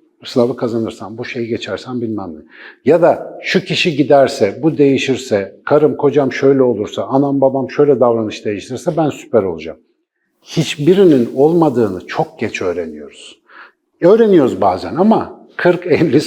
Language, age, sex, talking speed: Turkish, 50-69, male, 130 wpm